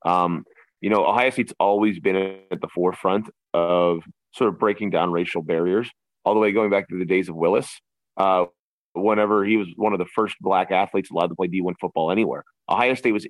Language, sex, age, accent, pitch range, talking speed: English, male, 30-49, American, 90-110 Hz, 210 wpm